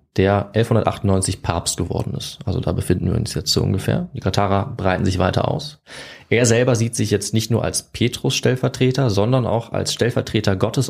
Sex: male